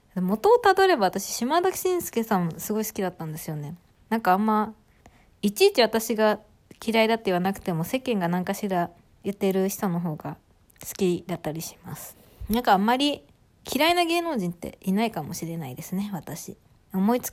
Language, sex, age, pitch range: Japanese, female, 20-39, 185-260 Hz